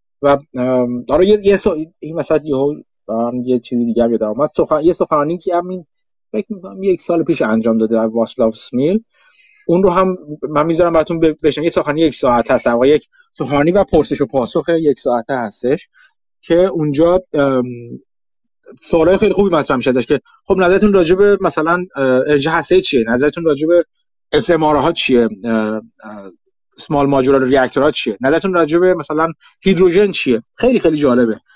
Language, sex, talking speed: Persian, male, 150 wpm